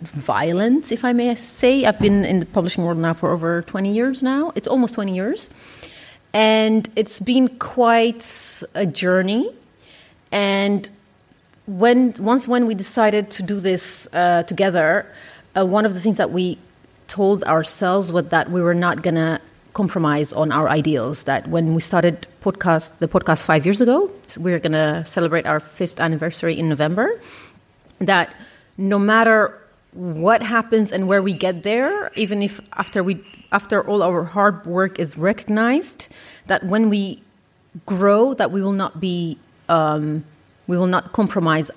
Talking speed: 160 wpm